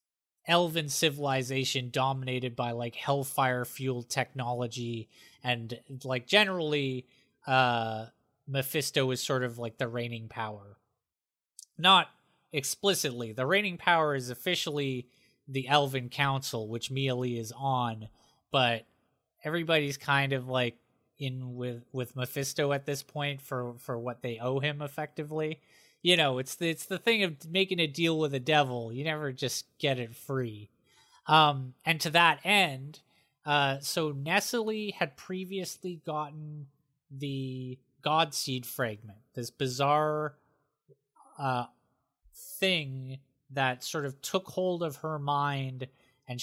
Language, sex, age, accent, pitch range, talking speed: English, male, 20-39, American, 125-155 Hz, 130 wpm